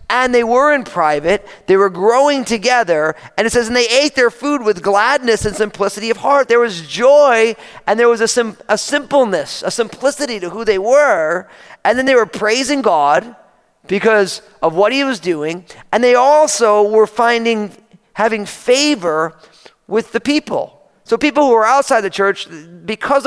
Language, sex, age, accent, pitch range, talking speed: English, male, 40-59, American, 205-265 Hz, 180 wpm